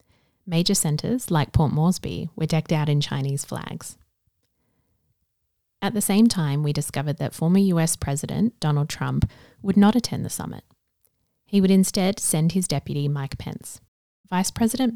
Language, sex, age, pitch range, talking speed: English, female, 30-49, 145-185 Hz, 155 wpm